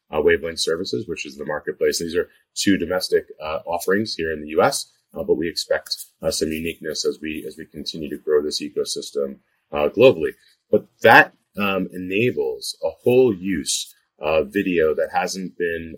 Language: English